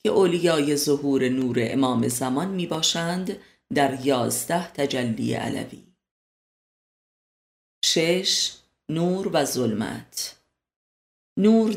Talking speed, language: 80 wpm, Persian